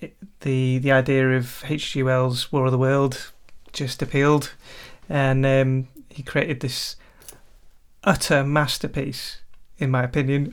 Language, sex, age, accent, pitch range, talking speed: English, male, 30-49, British, 130-150 Hz, 130 wpm